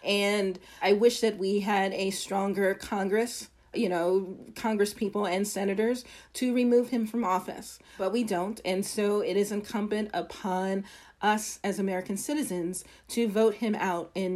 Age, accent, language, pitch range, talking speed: 40-59, American, English, 195-240 Hz, 160 wpm